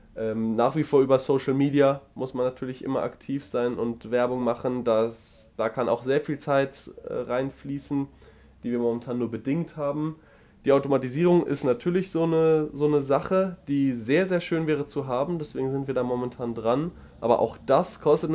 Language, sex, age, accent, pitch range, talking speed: German, male, 20-39, German, 110-135 Hz, 175 wpm